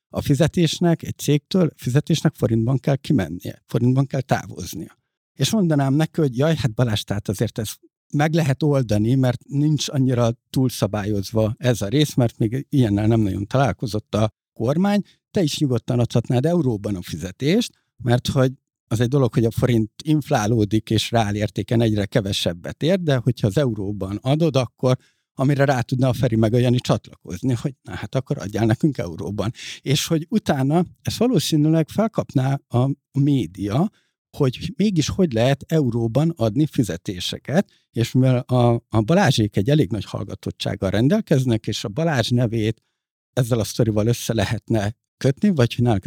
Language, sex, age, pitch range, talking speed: Hungarian, male, 60-79, 115-145 Hz, 150 wpm